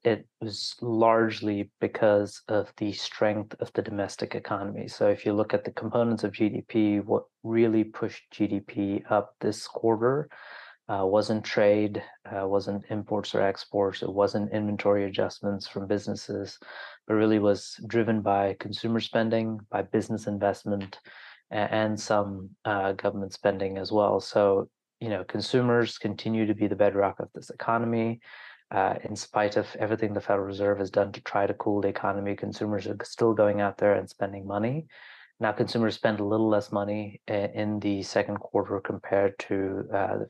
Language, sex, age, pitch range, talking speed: English, male, 30-49, 100-110 Hz, 165 wpm